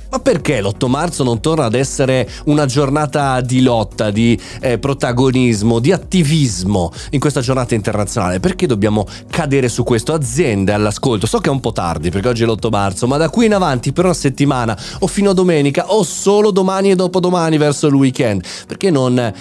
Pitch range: 115-155 Hz